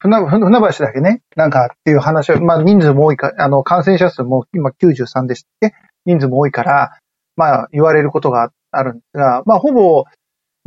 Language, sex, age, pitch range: Japanese, male, 40-59, 140-200 Hz